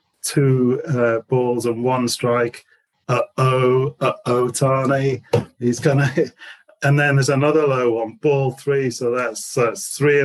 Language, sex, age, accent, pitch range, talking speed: English, male, 40-59, British, 115-140 Hz, 145 wpm